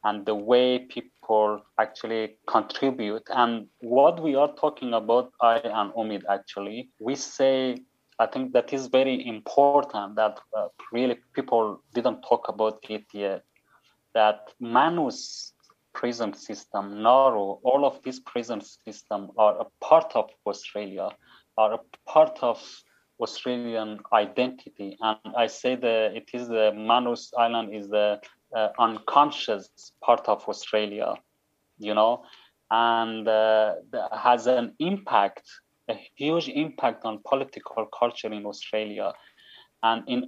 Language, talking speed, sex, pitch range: English, 130 wpm, male, 110-130 Hz